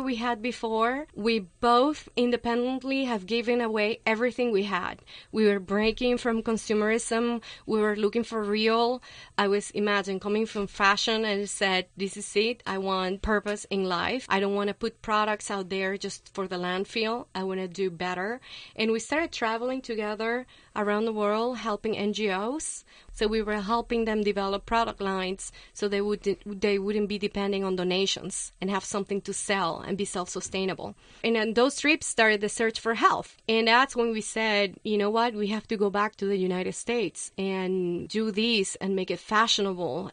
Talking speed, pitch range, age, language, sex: 180 wpm, 195-230 Hz, 30-49, English, female